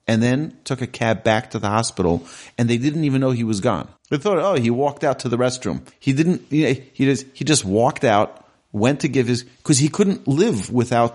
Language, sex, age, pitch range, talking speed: English, male, 30-49, 95-125 Hz, 240 wpm